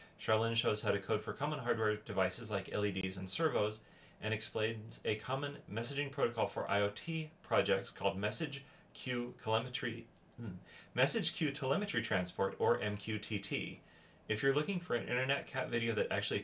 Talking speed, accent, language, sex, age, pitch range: 145 wpm, American, English, male, 30-49, 100-120 Hz